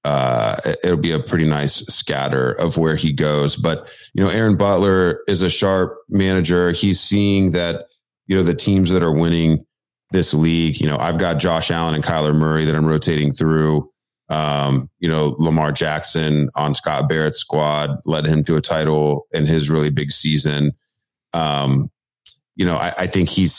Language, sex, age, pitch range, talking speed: English, male, 30-49, 75-95 Hz, 185 wpm